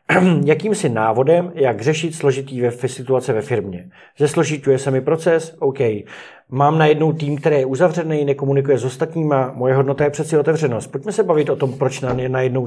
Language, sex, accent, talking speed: Czech, male, native, 160 wpm